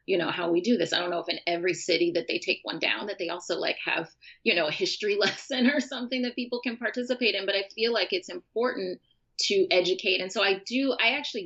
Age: 30-49